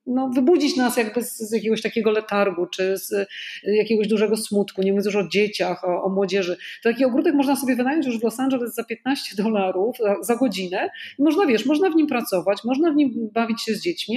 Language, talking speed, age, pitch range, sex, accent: Polish, 225 wpm, 40-59, 195-245 Hz, female, native